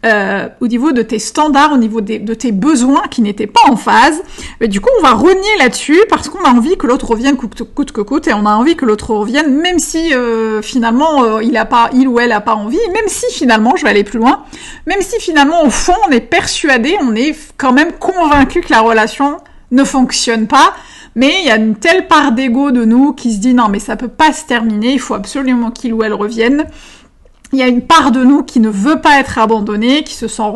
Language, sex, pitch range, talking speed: French, female, 225-295 Hz, 255 wpm